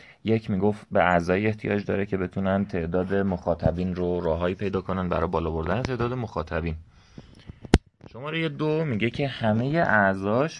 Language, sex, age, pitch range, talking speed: Persian, male, 30-49, 85-120 Hz, 145 wpm